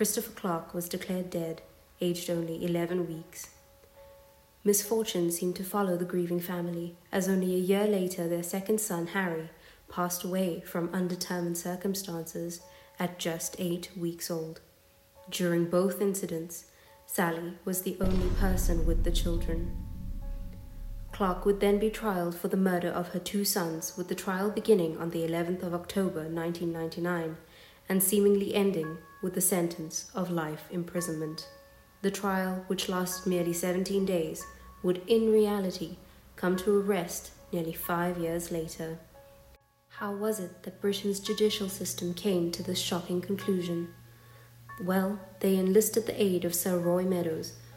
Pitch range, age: 165-195 Hz, 30-49